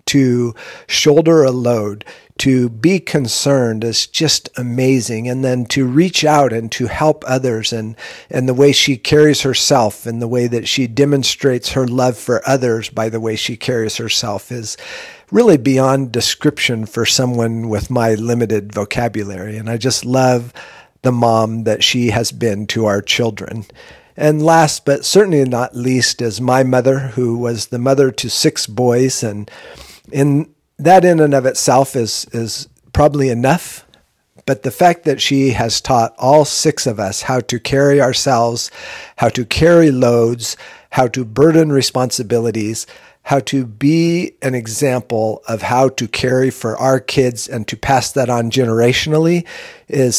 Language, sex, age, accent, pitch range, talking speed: English, male, 50-69, American, 115-135 Hz, 160 wpm